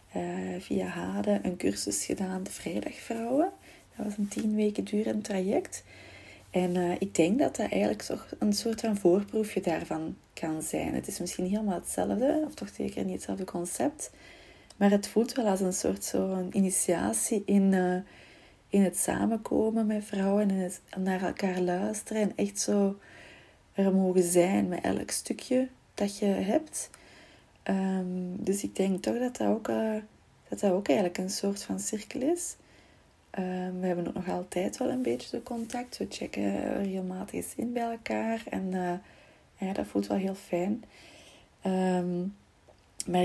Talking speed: 160 wpm